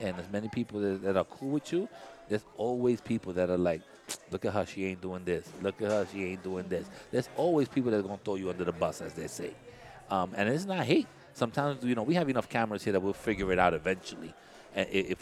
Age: 30-49